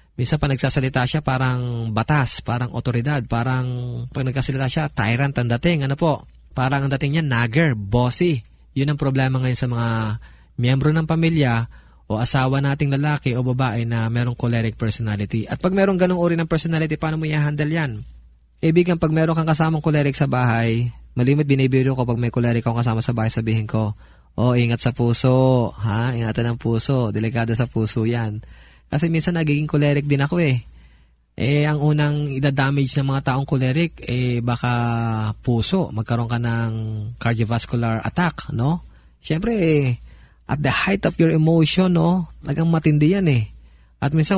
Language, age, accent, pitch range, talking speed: Filipino, 20-39, native, 115-150 Hz, 165 wpm